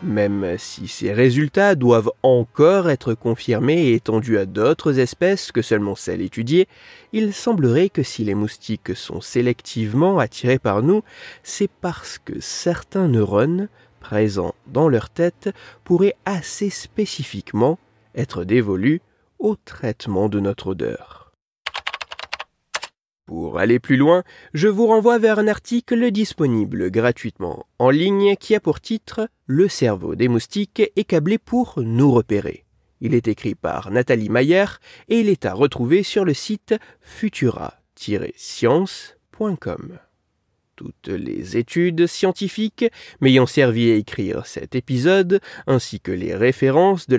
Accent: French